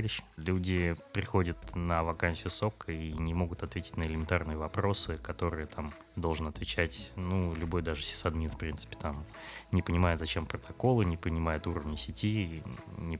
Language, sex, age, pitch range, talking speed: Russian, male, 20-39, 85-100 Hz, 145 wpm